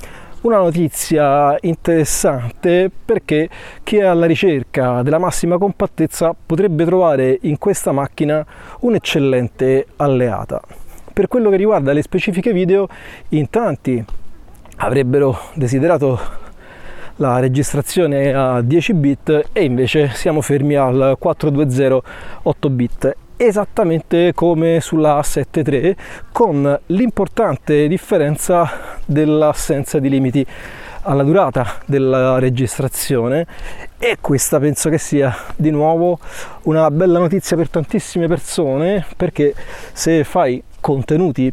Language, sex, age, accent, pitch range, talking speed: Italian, male, 30-49, native, 130-170 Hz, 105 wpm